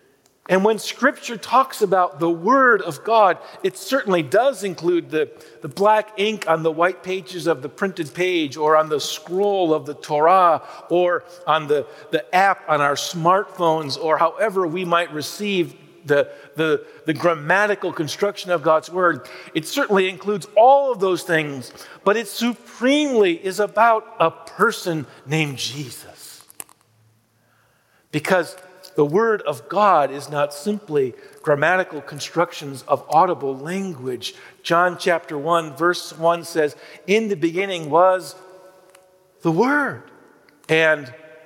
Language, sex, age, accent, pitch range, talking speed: English, male, 50-69, American, 155-195 Hz, 140 wpm